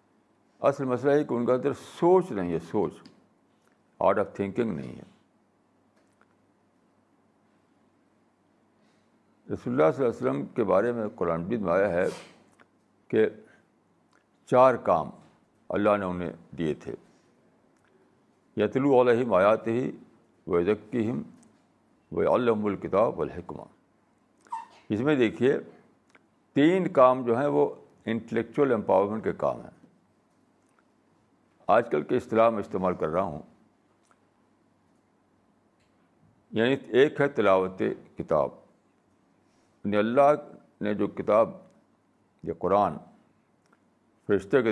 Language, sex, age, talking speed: Urdu, male, 60-79, 110 wpm